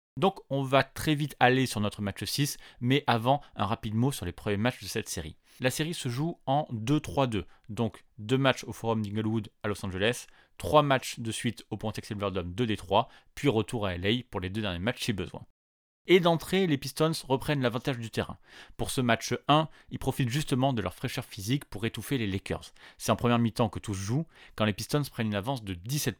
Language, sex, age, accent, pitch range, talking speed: French, male, 30-49, French, 105-140 Hz, 215 wpm